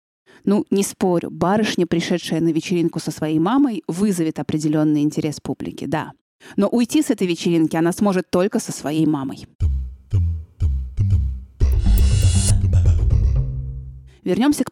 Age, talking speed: 30-49, 110 wpm